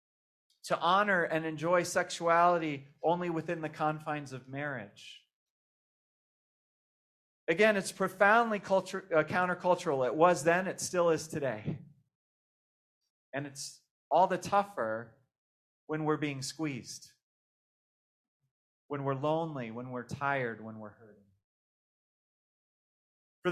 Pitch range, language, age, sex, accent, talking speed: 130-175 Hz, English, 30-49, male, American, 110 wpm